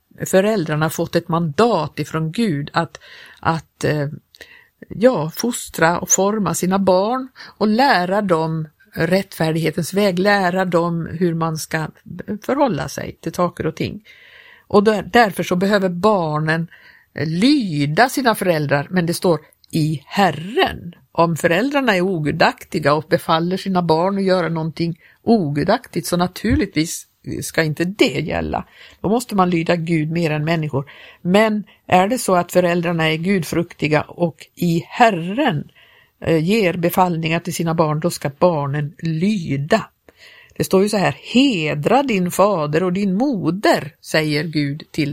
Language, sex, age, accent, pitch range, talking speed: Swedish, female, 50-69, native, 160-200 Hz, 135 wpm